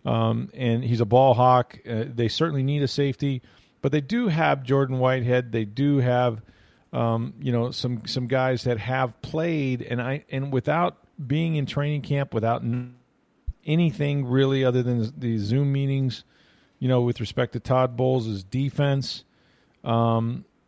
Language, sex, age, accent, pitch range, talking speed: English, male, 40-59, American, 115-140 Hz, 165 wpm